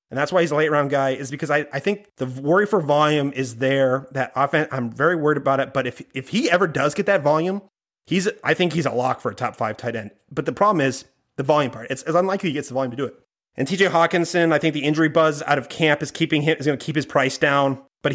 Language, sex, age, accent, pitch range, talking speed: English, male, 30-49, American, 130-155 Hz, 285 wpm